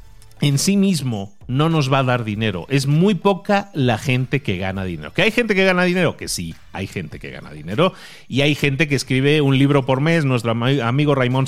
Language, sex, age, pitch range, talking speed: Spanish, male, 40-59, 115-160 Hz, 220 wpm